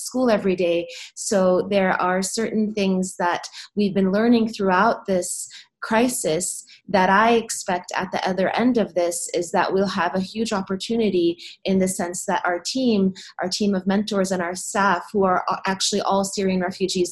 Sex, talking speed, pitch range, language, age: female, 175 wpm, 180-205 Hz, English, 30-49